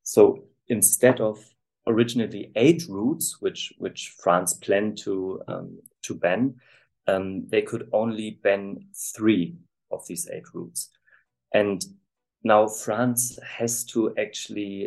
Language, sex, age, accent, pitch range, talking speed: English, male, 30-49, German, 100-125 Hz, 120 wpm